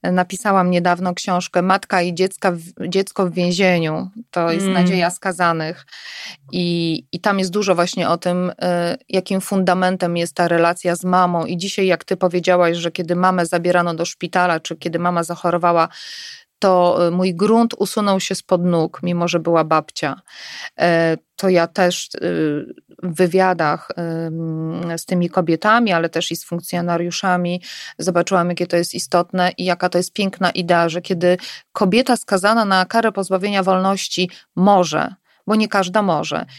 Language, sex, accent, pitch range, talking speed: Polish, female, native, 175-200 Hz, 150 wpm